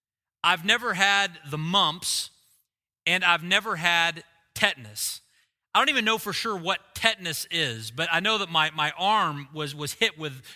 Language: English